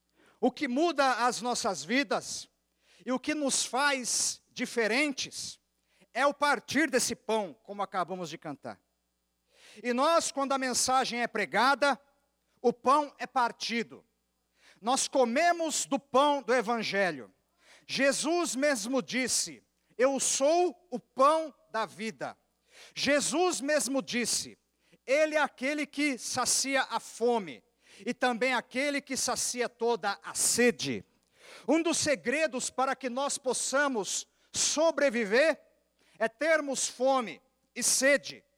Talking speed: 120 wpm